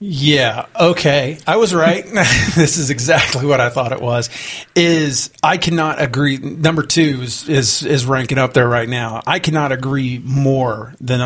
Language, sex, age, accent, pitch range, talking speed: English, male, 30-49, American, 135-165 Hz, 170 wpm